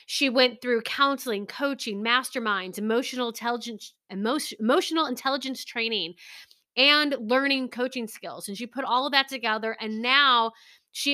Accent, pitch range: American, 220-260 Hz